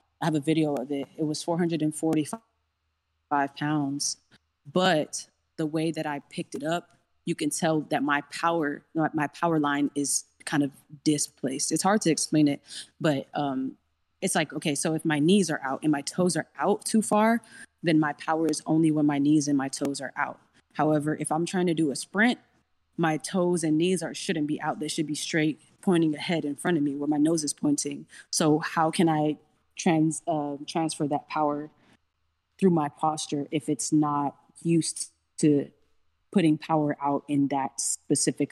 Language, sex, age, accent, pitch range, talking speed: English, female, 20-39, American, 140-160 Hz, 195 wpm